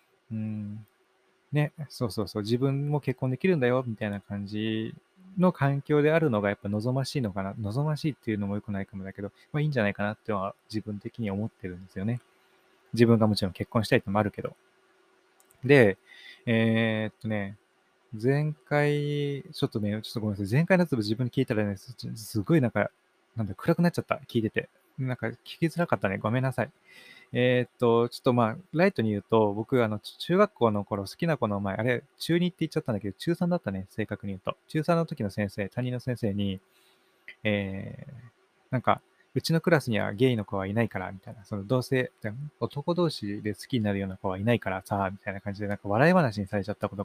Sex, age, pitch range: male, 20-39, 105-140 Hz